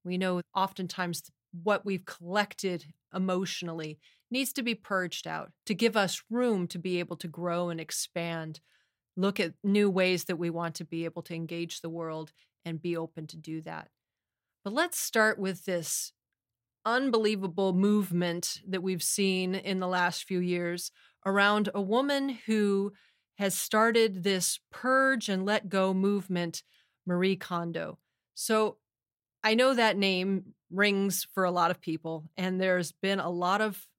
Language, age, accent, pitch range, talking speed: English, 30-49, American, 170-215 Hz, 155 wpm